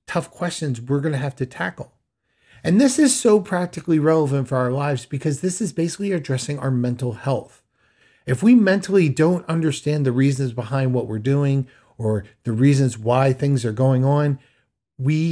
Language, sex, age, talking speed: English, male, 40-59, 175 wpm